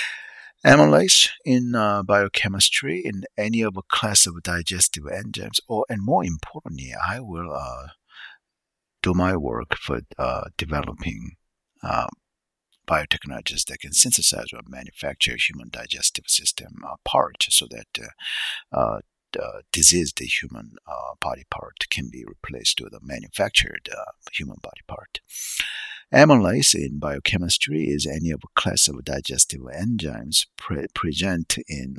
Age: 60-79